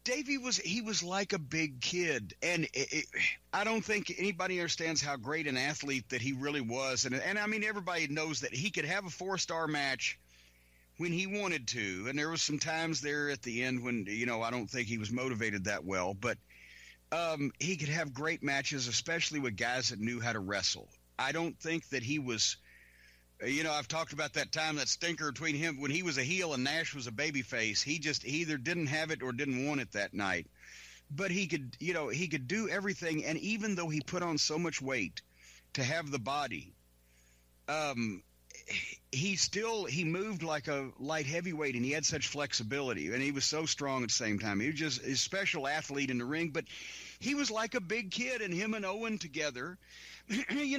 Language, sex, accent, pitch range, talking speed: English, male, American, 130-180 Hz, 215 wpm